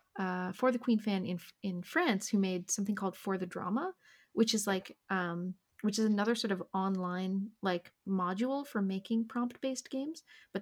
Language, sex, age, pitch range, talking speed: English, female, 30-49, 180-215 Hz, 185 wpm